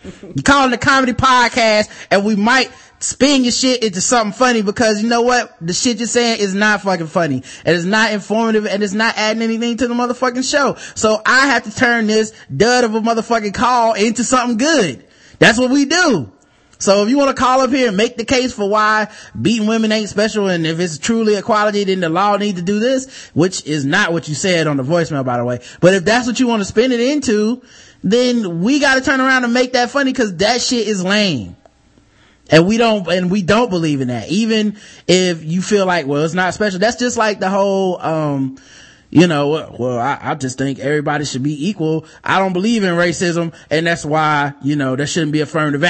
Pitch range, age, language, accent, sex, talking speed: 165-230 Hz, 20-39, English, American, male, 225 wpm